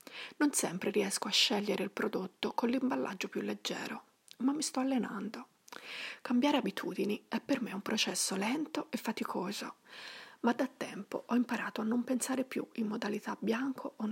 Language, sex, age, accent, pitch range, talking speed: Italian, female, 30-49, native, 220-265 Hz, 160 wpm